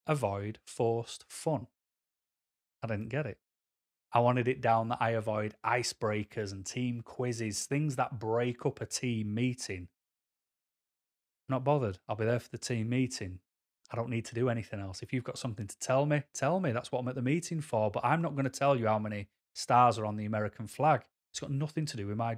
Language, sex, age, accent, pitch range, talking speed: English, male, 30-49, British, 110-135 Hz, 215 wpm